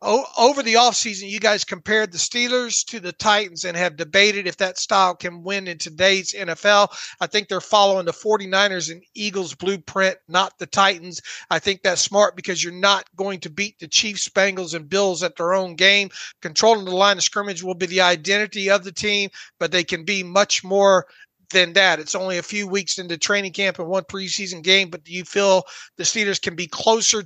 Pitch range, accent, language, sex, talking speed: 185-220 Hz, American, English, male, 205 wpm